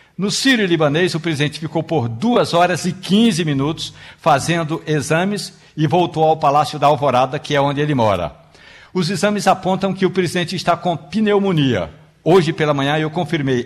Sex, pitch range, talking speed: male, 140-175 Hz, 165 wpm